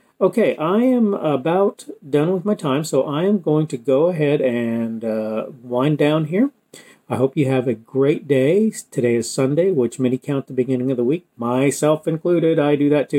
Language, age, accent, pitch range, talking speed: English, 40-59, American, 130-170 Hz, 200 wpm